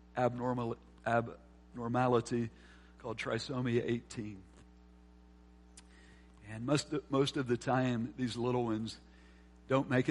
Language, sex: English, male